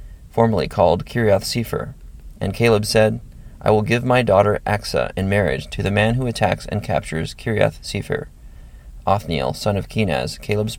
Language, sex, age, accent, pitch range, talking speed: English, male, 30-49, American, 75-115 Hz, 160 wpm